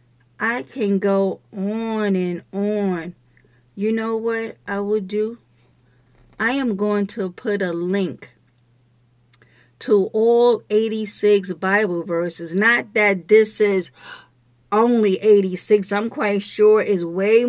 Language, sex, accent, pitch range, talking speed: English, female, American, 180-235 Hz, 120 wpm